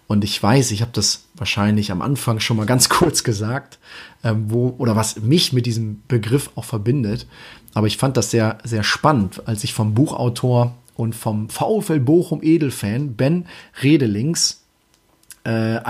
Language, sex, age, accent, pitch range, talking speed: German, male, 30-49, German, 115-145 Hz, 160 wpm